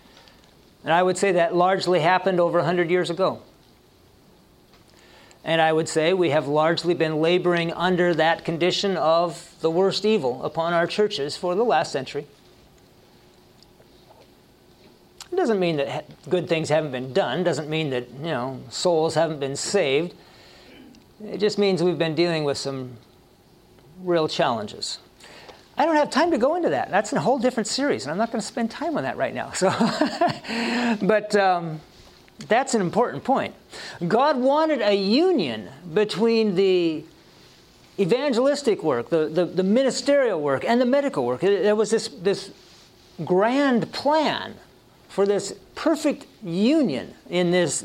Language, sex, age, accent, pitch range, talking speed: English, male, 50-69, American, 165-230 Hz, 155 wpm